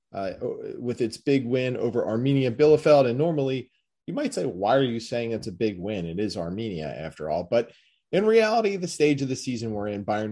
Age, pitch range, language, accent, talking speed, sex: 30-49, 110-145 Hz, English, American, 215 wpm, male